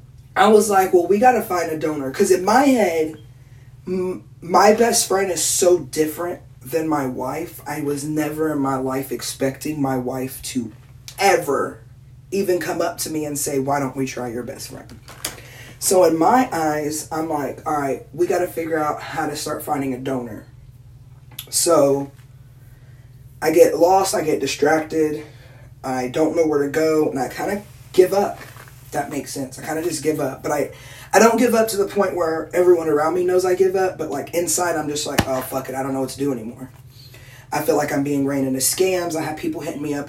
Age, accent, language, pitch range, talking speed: 20-39, American, English, 130-165 Hz, 215 wpm